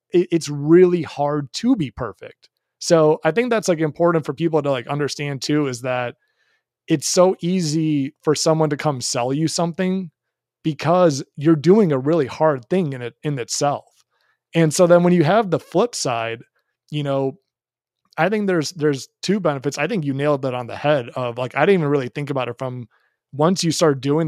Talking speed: 200 wpm